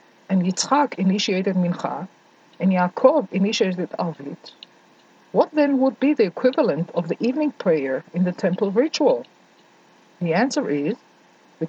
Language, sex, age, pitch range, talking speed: English, female, 50-69, 175-235 Hz, 135 wpm